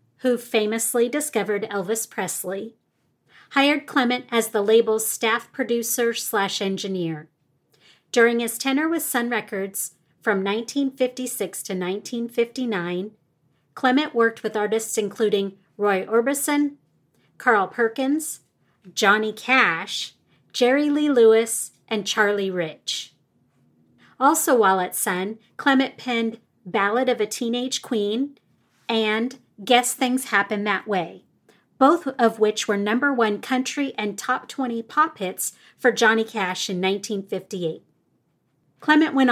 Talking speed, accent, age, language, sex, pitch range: 115 wpm, American, 30-49, English, female, 200-250 Hz